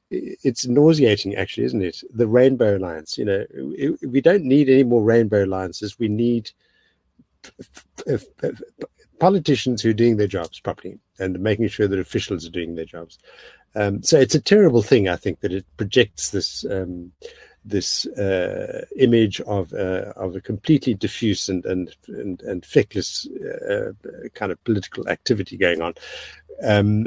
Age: 60-79